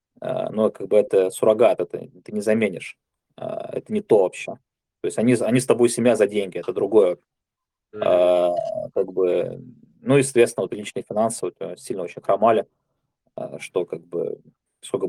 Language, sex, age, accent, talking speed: Russian, male, 20-39, native, 180 wpm